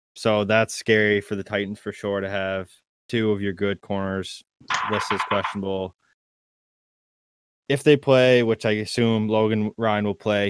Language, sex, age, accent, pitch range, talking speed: English, male, 20-39, American, 95-105 Hz, 160 wpm